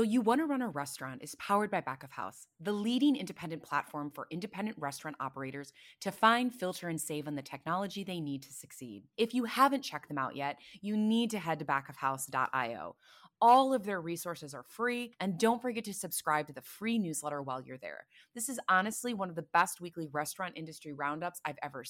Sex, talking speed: female, 210 wpm